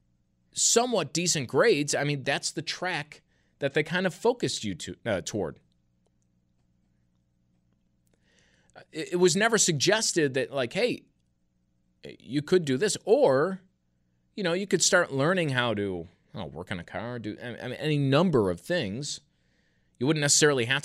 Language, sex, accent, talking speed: English, male, American, 155 wpm